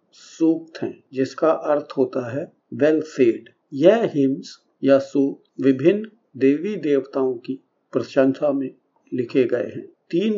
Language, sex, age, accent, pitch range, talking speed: Hindi, male, 50-69, native, 130-160 Hz, 115 wpm